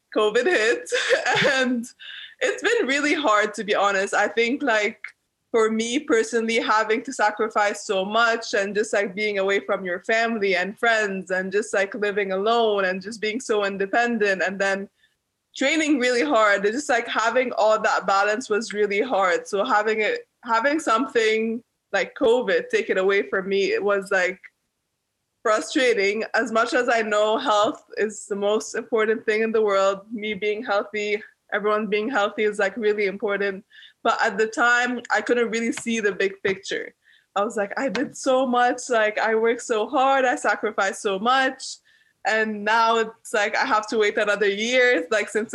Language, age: English, 20-39